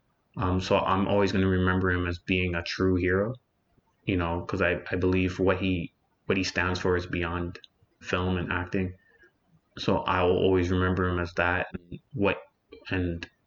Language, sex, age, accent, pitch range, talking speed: English, male, 20-39, American, 90-95 Hz, 185 wpm